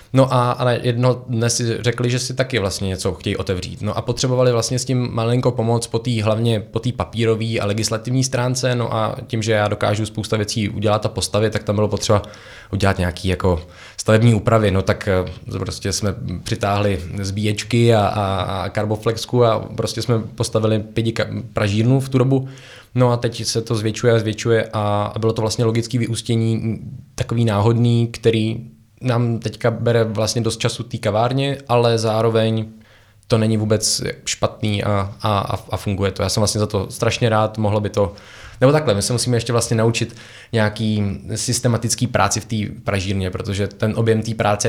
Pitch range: 105-115 Hz